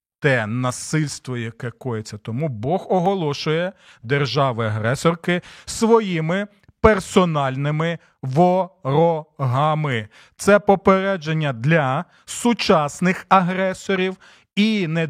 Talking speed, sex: 70 wpm, male